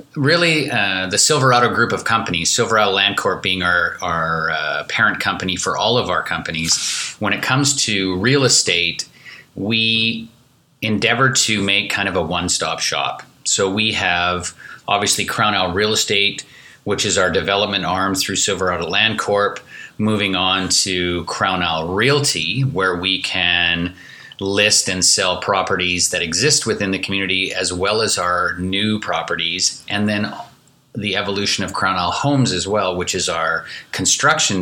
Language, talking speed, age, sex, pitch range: English, 160 wpm, 30-49, male, 90-115 Hz